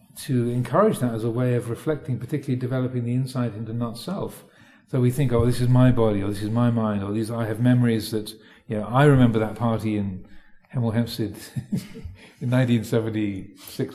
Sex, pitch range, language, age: male, 110-130 Hz, English, 40-59